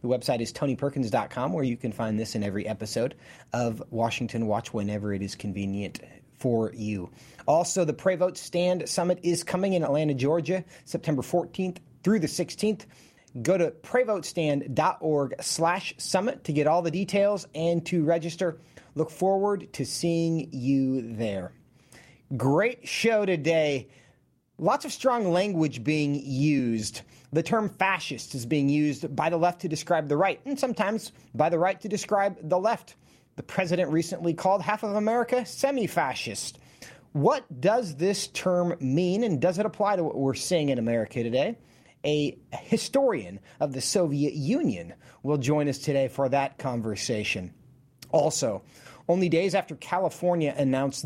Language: English